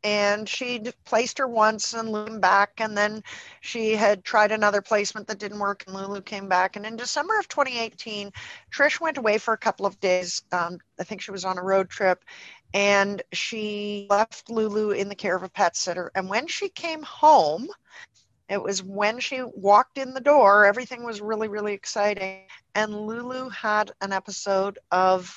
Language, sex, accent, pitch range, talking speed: English, female, American, 180-220 Hz, 185 wpm